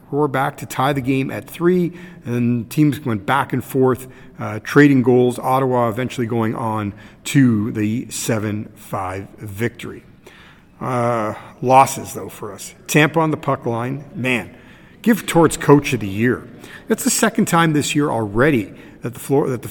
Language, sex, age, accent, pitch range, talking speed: English, male, 50-69, American, 115-155 Hz, 160 wpm